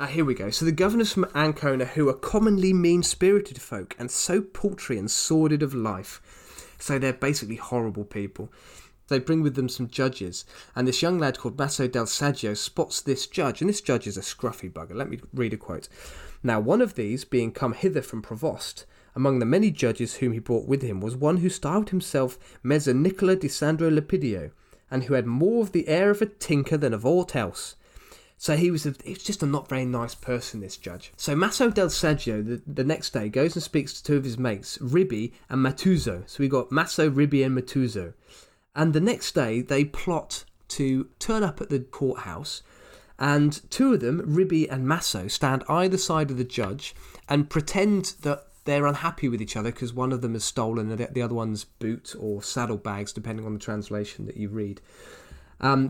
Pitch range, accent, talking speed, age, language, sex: 115-160 Hz, British, 205 wpm, 20-39, English, male